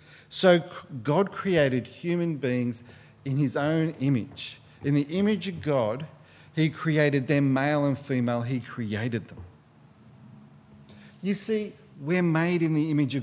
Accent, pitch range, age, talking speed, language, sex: Australian, 140-195 Hz, 40-59, 140 wpm, English, male